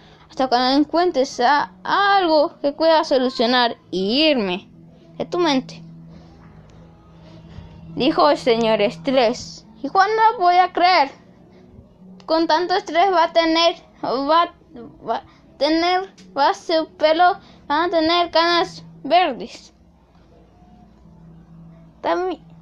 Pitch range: 220-350 Hz